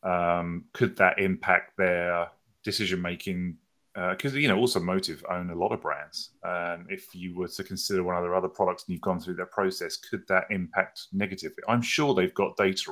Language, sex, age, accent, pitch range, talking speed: English, male, 30-49, British, 90-100 Hz, 200 wpm